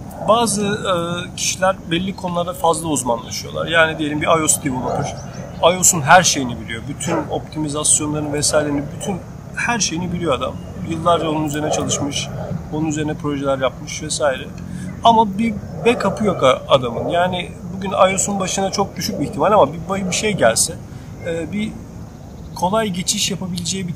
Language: Turkish